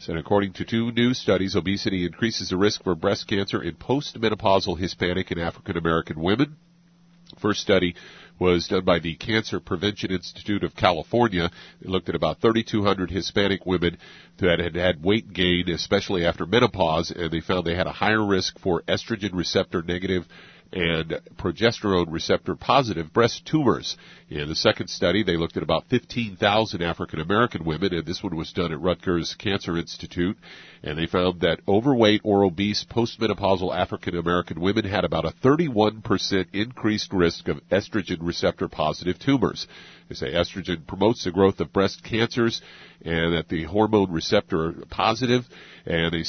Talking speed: 160 wpm